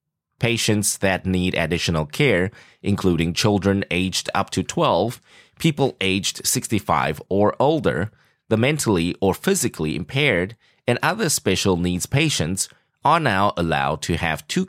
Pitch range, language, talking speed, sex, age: 85-125 Hz, English, 130 wpm, male, 20-39